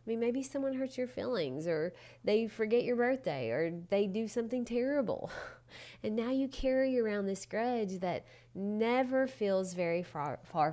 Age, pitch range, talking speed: 30-49, 175-255 Hz, 170 wpm